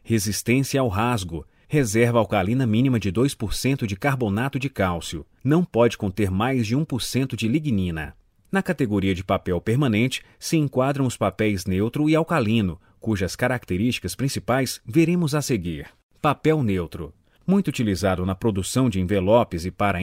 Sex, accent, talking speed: male, Brazilian, 145 wpm